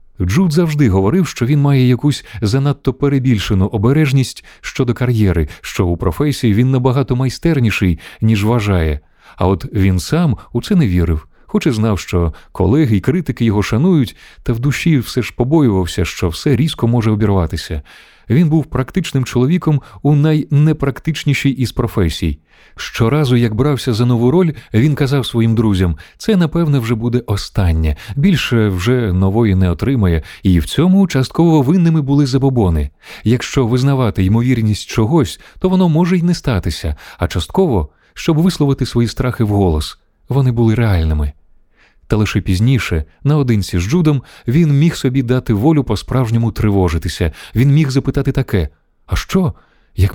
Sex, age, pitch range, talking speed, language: male, 30-49, 95-140 Hz, 145 wpm, Ukrainian